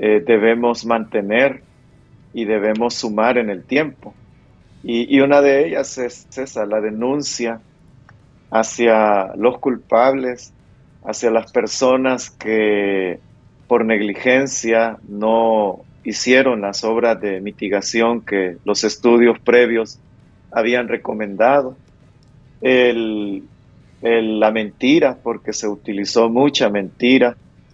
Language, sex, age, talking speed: Spanish, male, 40-59, 105 wpm